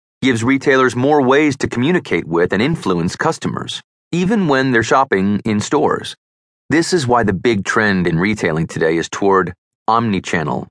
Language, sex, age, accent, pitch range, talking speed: English, male, 30-49, American, 90-130 Hz, 155 wpm